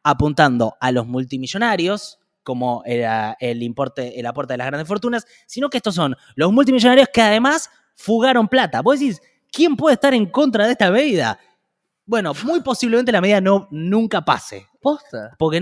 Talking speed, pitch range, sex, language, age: 165 wpm, 145-225 Hz, male, Spanish, 20-39